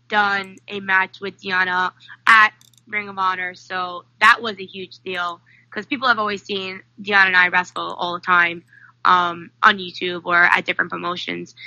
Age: 20-39